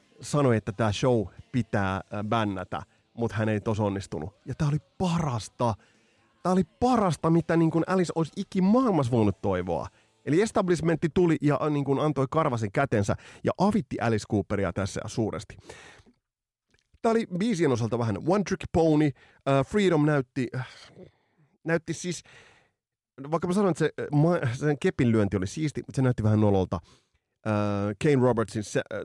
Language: Finnish